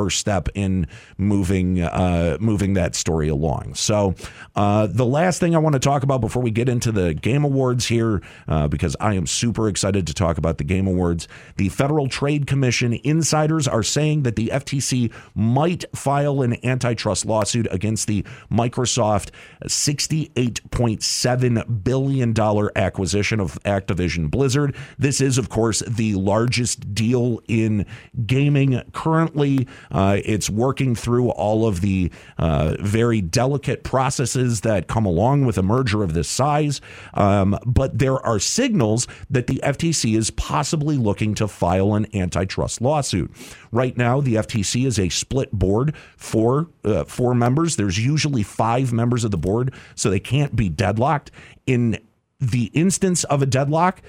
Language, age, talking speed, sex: English, 50-69, 155 wpm, male